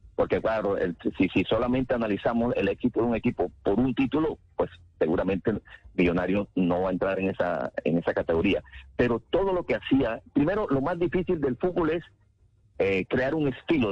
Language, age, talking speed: Spanish, 50-69, 190 wpm